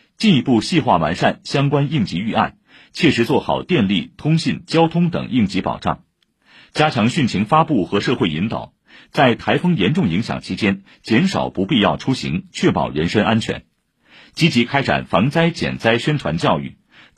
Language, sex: Chinese, male